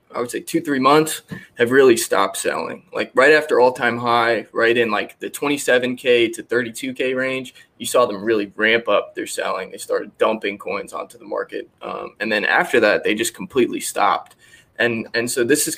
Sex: male